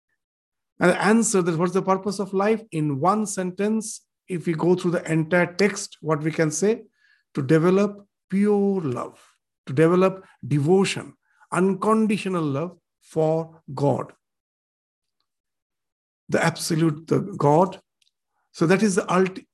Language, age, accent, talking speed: English, 50-69, Indian, 130 wpm